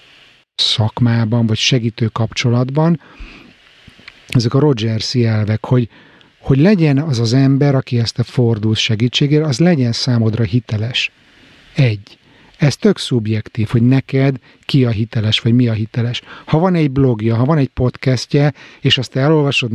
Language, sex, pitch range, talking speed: Hungarian, male, 115-140 Hz, 145 wpm